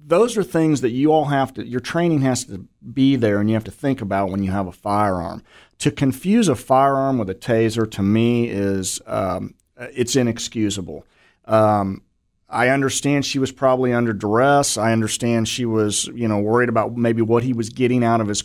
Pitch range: 105-130 Hz